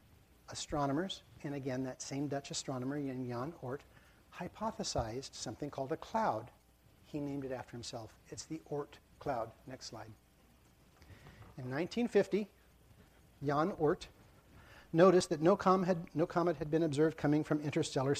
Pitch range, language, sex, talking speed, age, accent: 130-170 Hz, English, male, 130 wpm, 50-69, American